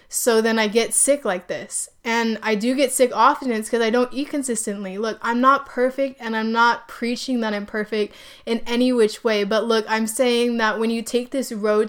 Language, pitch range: English, 215-270 Hz